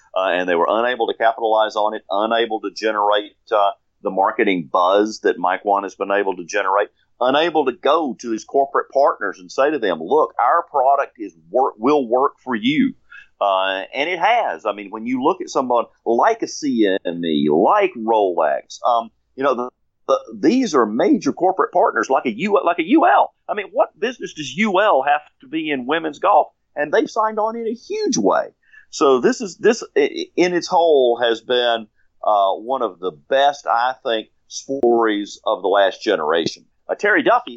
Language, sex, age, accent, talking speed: English, male, 40-59, American, 190 wpm